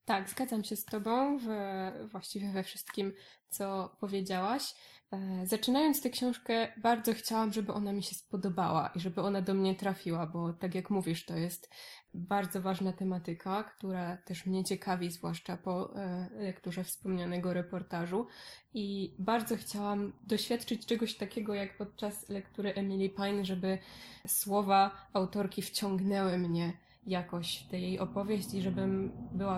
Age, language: 10-29, Polish